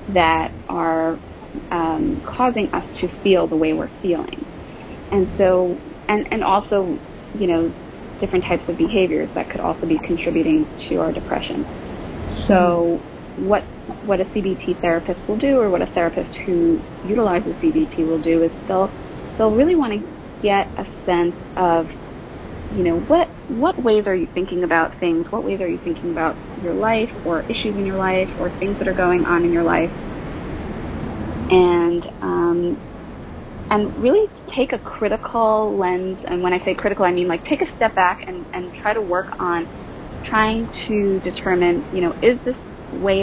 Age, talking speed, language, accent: 30-49, 170 wpm, English, American